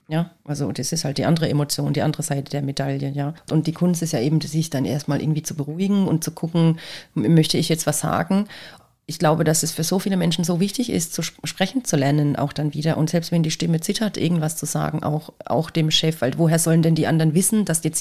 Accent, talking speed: German, 245 wpm